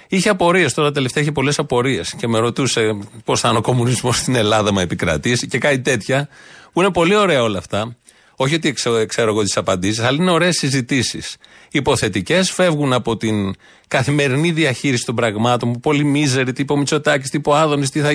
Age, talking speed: 30-49, 180 wpm